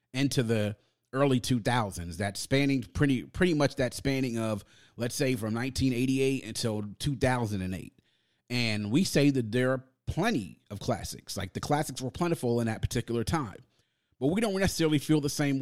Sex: male